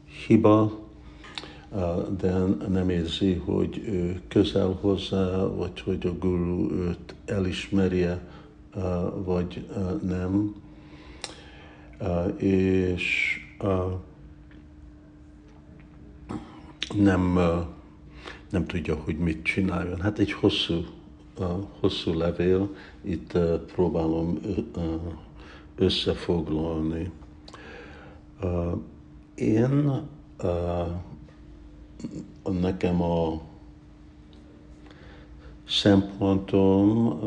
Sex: male